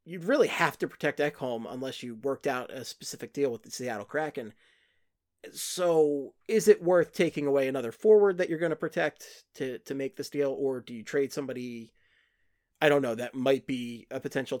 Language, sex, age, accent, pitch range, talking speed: English, male, 30-49, American, 130-200 Hz, 195 wpm